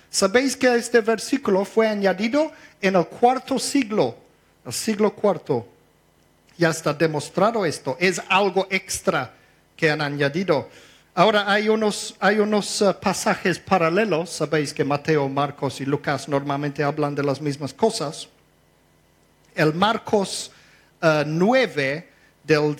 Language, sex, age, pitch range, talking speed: Spanish, male, 50-69, 150-200 Hz, 125 wpm